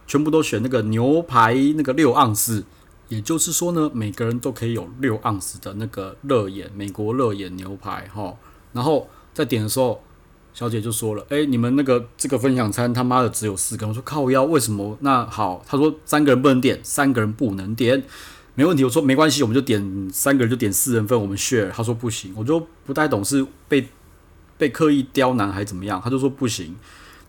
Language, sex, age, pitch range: Chinese, male, 30-49, 105-140 Hz